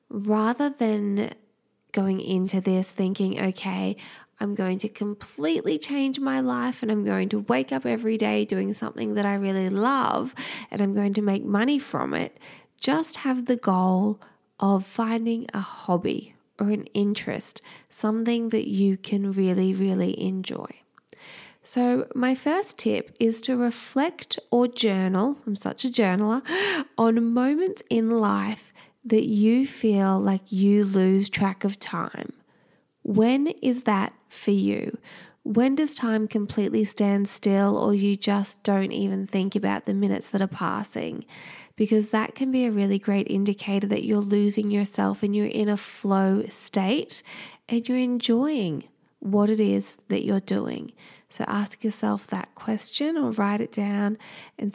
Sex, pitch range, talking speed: female, 195-235 Hz, 155 wpm